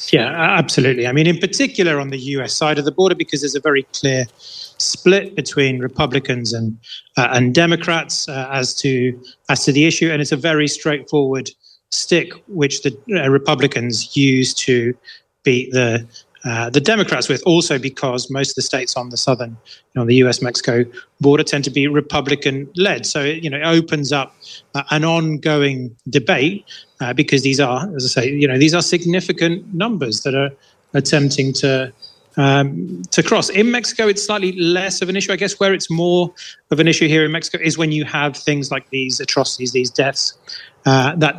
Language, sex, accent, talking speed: English, male, British, 190 wpm